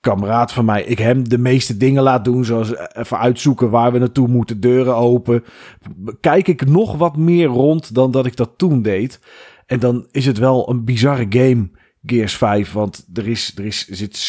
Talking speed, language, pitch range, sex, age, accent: 195 wpm, Dutch, 105-130 Hz, male, 40-59, Dutch